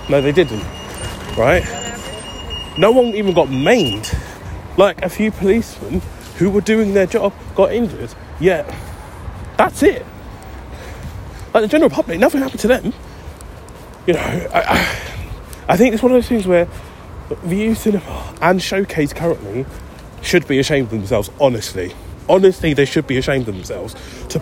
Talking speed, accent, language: 155 wpm, British, English